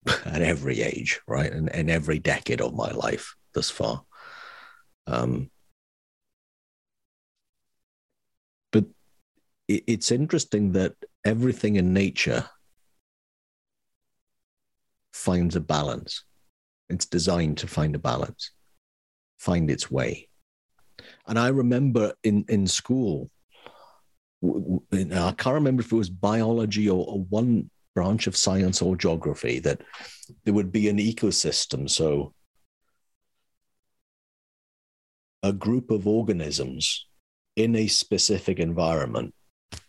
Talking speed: 110 wpm